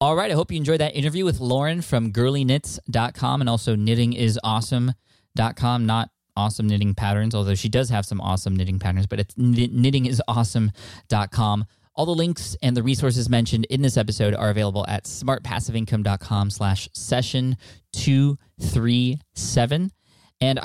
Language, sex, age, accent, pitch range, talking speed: English, male, 10-29, American, 105-125 Hz, 135 wpm